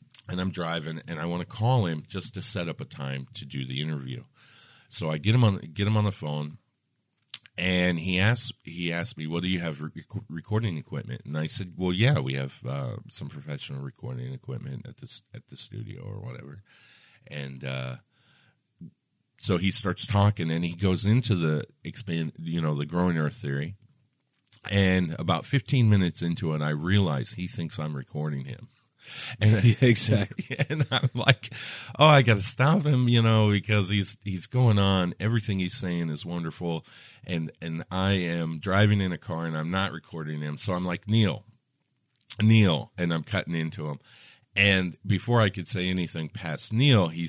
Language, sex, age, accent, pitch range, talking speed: English, male, 40-59, American, 80-115 Hz, 185 wpm